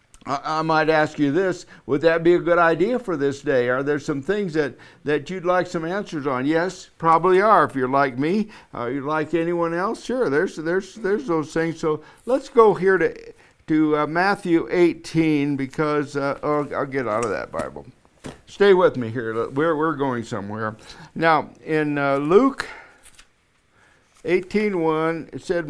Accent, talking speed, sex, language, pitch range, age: American, 175 wpm, male, English, 140-180 Hz, 60-79